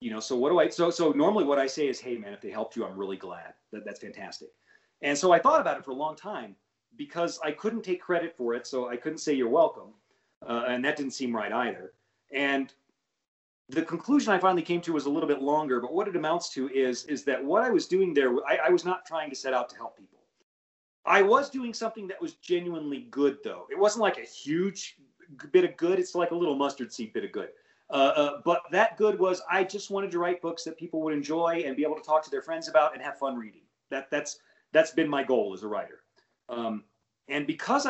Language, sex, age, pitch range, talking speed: English, male, 40-59, 140-210 Hz, 250 wpm